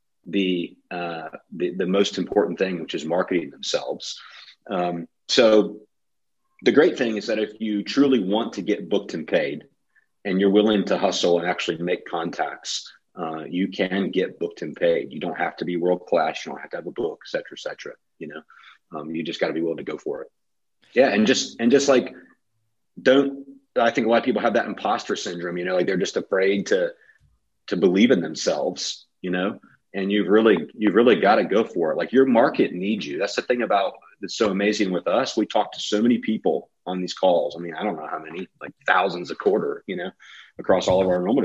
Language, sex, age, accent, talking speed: English, male, 40-59, American, 225 wpm